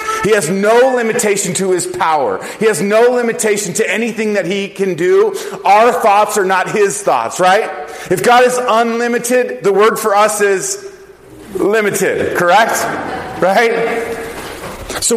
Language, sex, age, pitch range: English, male, 30-49, 155-210 Hz